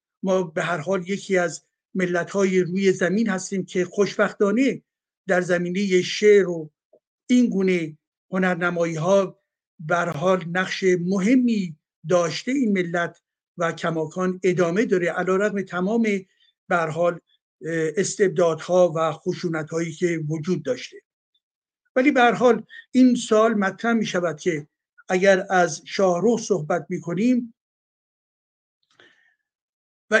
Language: Persian